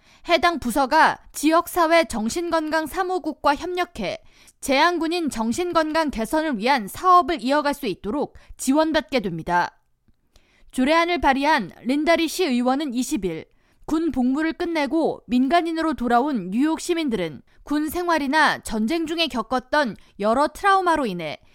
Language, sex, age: Korean, female, 20-39